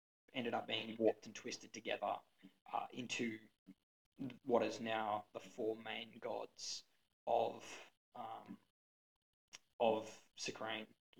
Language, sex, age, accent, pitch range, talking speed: English, male, 20-39, Australian, 110-130 Hz, 105 wpm